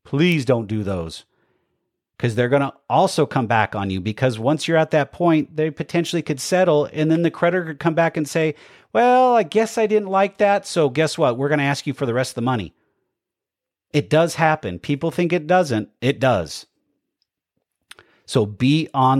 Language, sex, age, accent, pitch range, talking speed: English, male, 40-59, American, 115-165 Hz, 205 wpm